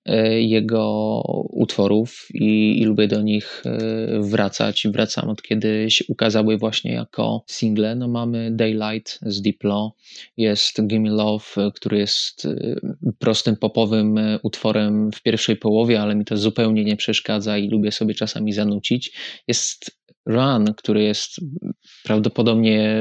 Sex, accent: male, native